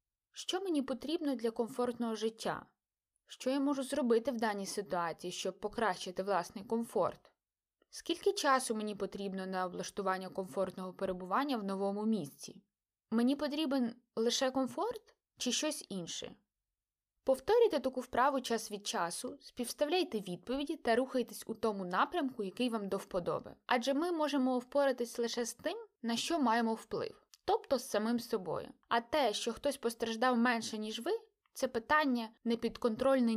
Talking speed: 140 wpm